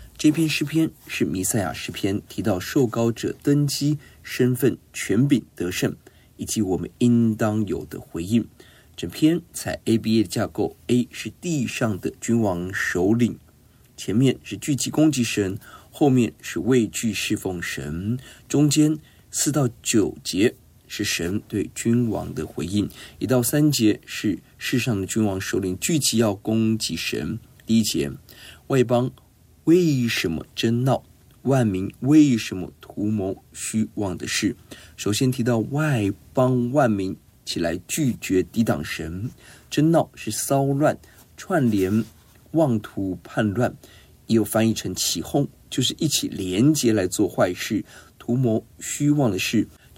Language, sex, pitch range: Chinese, male, 105-130 Hz